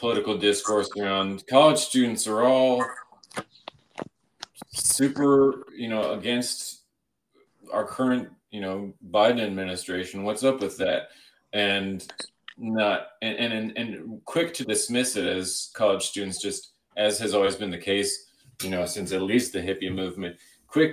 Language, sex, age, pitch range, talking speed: English, male, 30-49, 85-105 Hz, 140 wpm